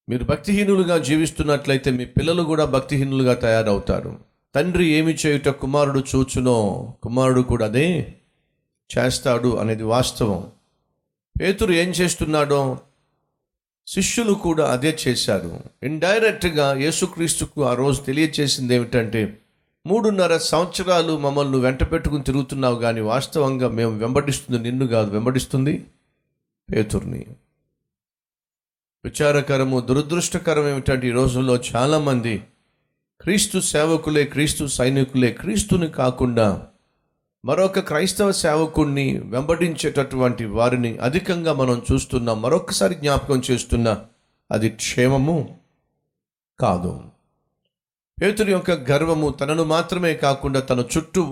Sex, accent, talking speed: male, native, 90 wpm